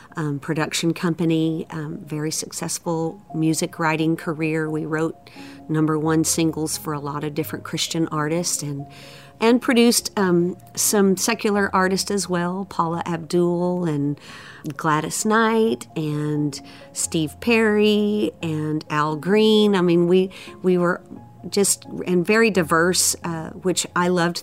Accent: American